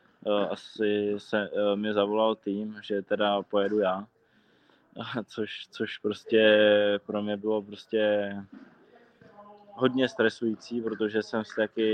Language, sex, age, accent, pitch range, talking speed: Czech, male, 20-39, native, 100-105 Hz, 105 wpm